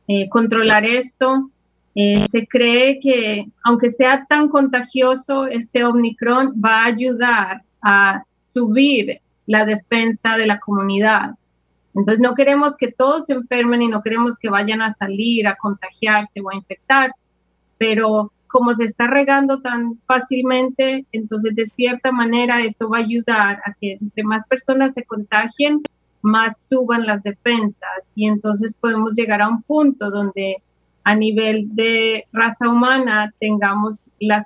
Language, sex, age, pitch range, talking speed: English, female, 30-49, 210-240 Hz, 145 wpm